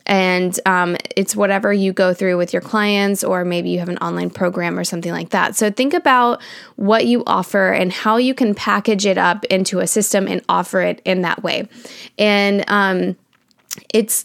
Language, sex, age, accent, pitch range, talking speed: English, female, 10-29, American, 185-215 Hz, 195 wpm